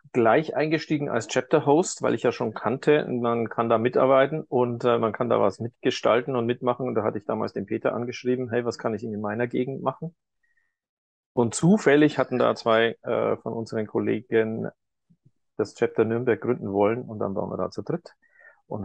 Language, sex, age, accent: German, male, 40-59, German